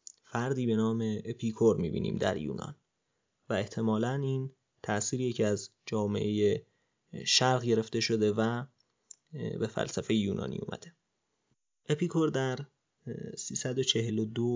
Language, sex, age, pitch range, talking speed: Persian, male, 30-49, 110-130 Hz, 100 wpm